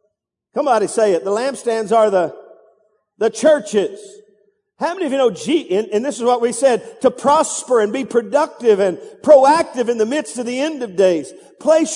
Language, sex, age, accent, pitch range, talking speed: English, male, 50-69, American, 215-285 Hz, 195 wpm